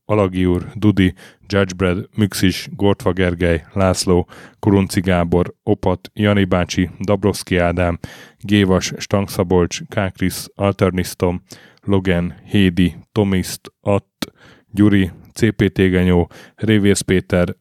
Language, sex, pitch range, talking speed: Hungarian, male, 90-105 Hz, 90 wpm